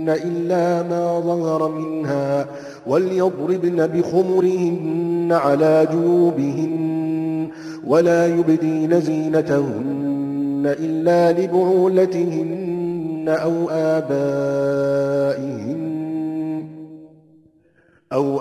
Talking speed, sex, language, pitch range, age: 50 wpm, male, Arabic, 155-175 Hz, 40-59